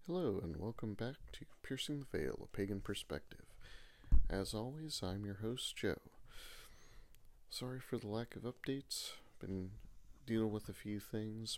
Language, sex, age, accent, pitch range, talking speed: English, male, 40-59, American, 90-110 Hz, 155 wpm